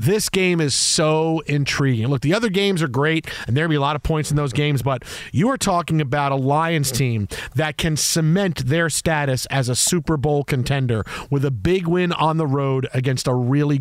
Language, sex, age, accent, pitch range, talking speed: English, male, 40-59, American, 140-170 Hz, 215 wpm